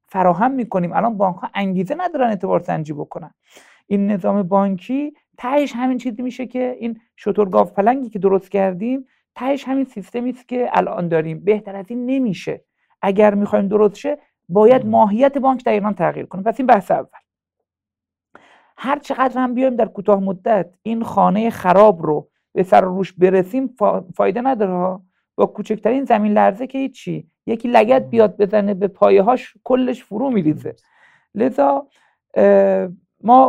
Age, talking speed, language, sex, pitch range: 50-69, 150 wpm, Persian, male, 195-250 Hz